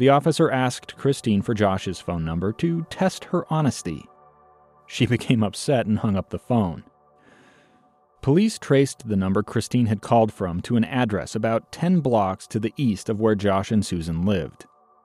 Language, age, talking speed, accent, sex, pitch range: English, 30-49, 170 wpm, American, male, 100-135 Hz